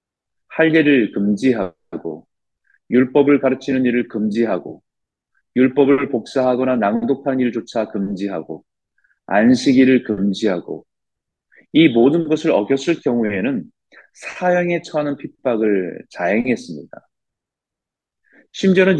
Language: Korean